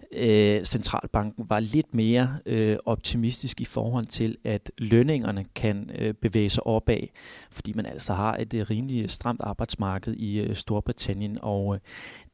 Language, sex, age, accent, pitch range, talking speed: Danish, male, 30-49, native, 105-120 Hz, 145 wpm